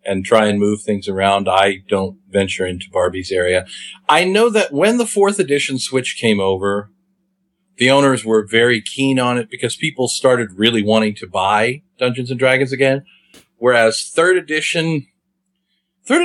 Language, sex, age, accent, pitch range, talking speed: English, male, 40-59, American, 115-185 Hz, 165 wpm